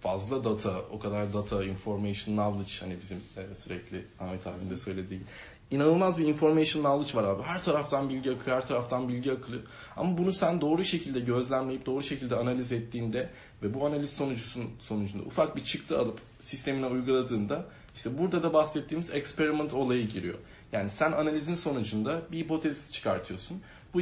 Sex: male